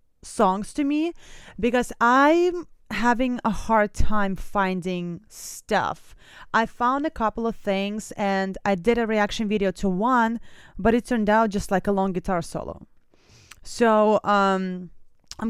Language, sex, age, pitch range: English, female, 20-39, 185-240 Hz